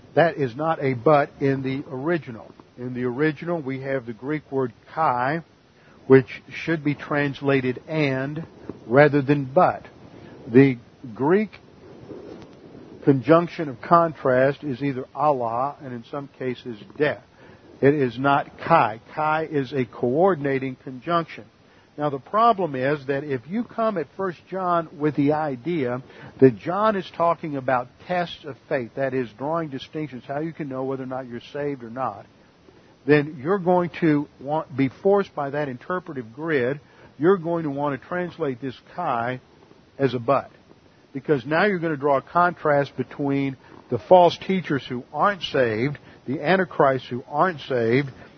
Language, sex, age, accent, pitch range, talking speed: English, male, 50-69, American, 130-160 Hz, 155 wpm